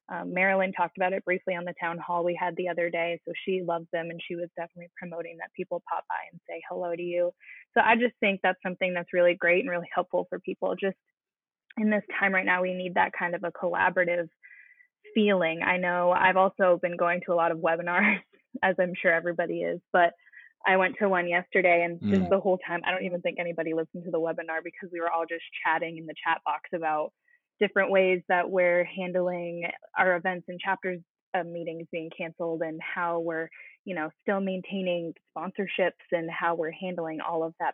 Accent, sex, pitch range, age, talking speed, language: American, female, 170-185 Hz, 20-39, 215 wpm, English